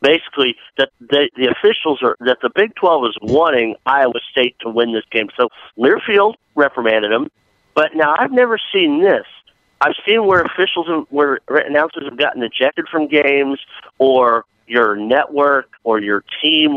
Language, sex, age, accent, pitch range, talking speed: English, male, 50-69, American, 115-150 Hz, 165 wpm